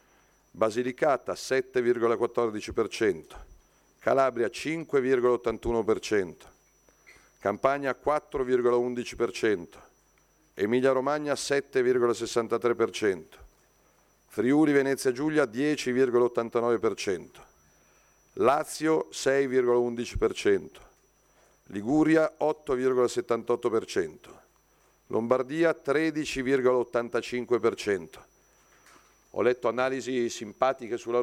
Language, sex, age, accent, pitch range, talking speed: Italian, male, 50-69, native, 120-145 Hz, 40 wpm